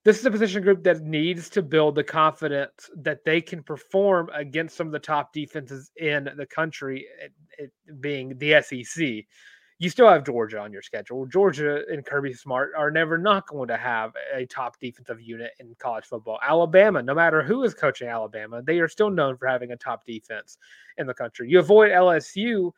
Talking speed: 190 wpm